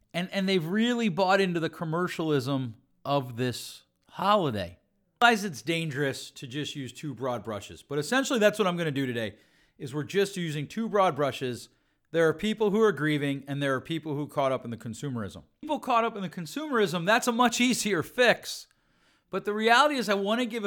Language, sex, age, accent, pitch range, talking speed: English, male, 40-59, American, 145-205 Hz, 210 wpm